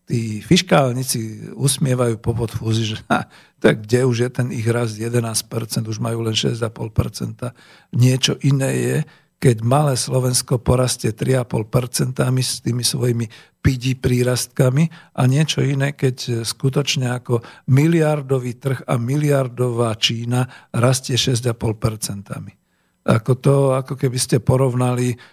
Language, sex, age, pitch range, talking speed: Slovak, male, 50-69, 115-135 Hz, 120 wpm